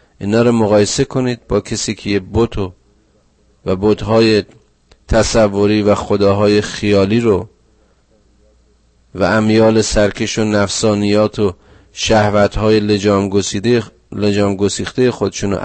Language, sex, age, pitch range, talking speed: Persian, male, 40-59, 100-115 Hz, 100 wpm